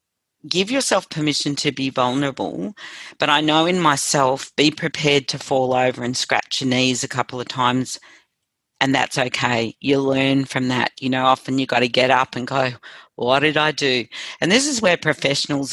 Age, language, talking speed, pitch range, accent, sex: 40-59, English, 190 wpm, 125-145 Hz, Australian, female